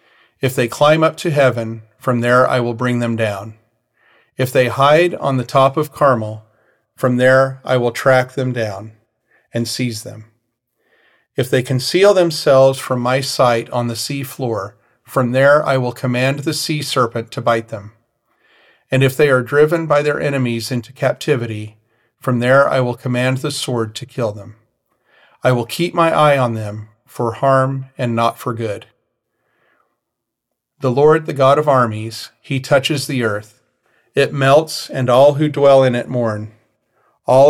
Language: English